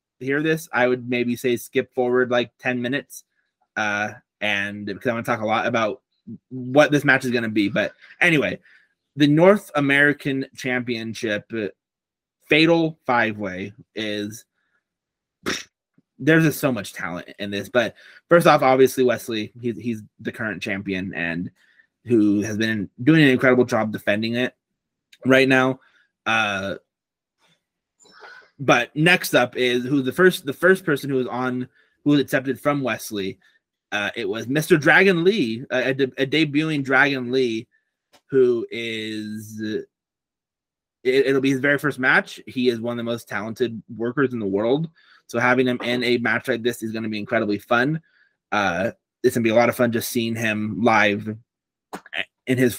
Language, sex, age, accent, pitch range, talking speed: English, male, 20-39, American, 110-140 Hz, 165 wpm